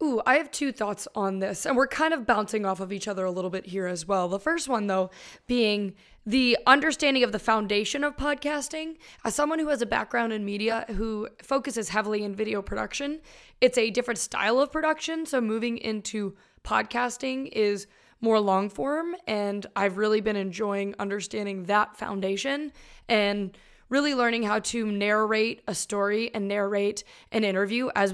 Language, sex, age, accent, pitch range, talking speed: English, female, 20-39, American, 200-250 Hz, 175 wpm